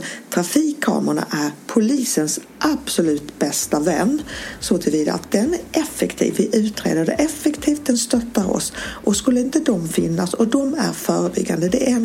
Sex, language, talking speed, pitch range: female, Swedish, 155 wpm, 195-270 Hz